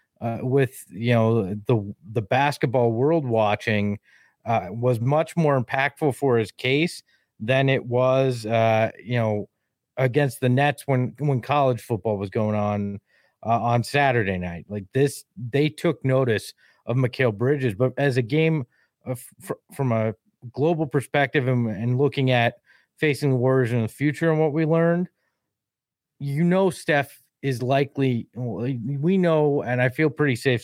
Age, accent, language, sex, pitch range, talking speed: 30-49, American, English, male, 120-155 Hz, 155 wpm